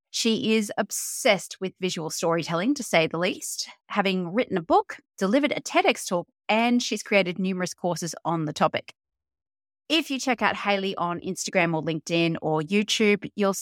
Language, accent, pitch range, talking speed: English, Australian, 170-235 Hz, 165 wpm